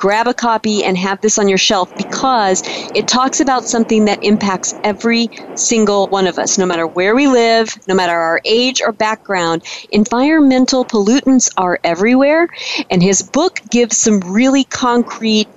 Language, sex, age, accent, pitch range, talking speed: English, female, 40-59, American, 195-255 Hz, 165 wpm